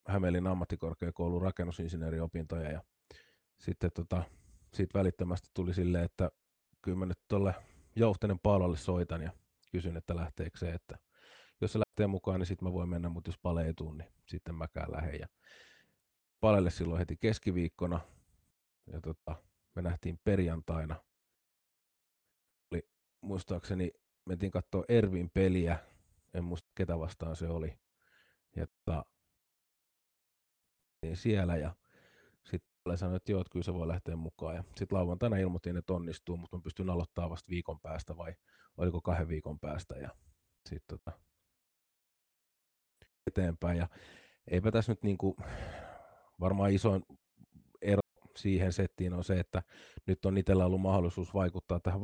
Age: 30-49